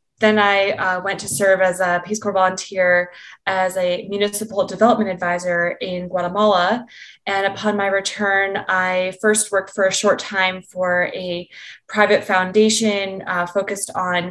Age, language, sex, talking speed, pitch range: 20-39, English, female, 150 wpm, 185-210 Hz